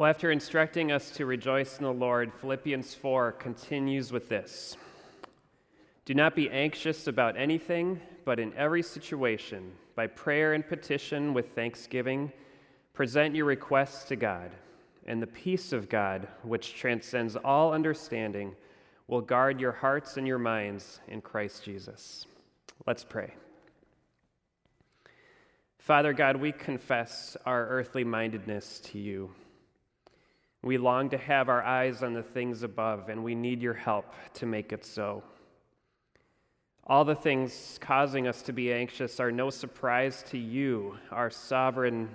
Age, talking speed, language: 30-49, 140 wpm, English